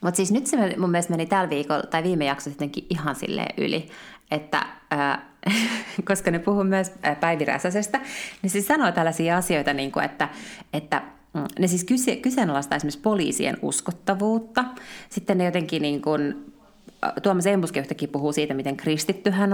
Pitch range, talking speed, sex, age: 150-205 Hz, 165 wpm, female, 30-49